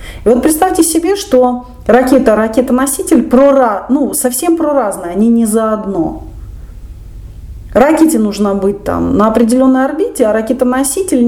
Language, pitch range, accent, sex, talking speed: Russian, 160-265 Hz, native, female, 120 wpm